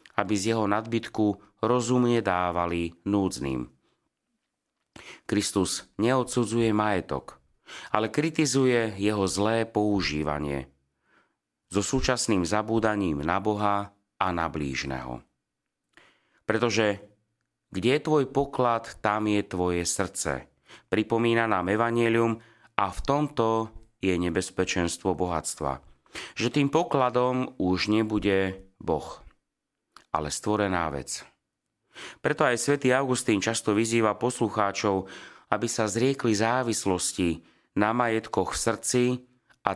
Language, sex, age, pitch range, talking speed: Slovak, male, 30-49, 95-120 Hz, 100 wpm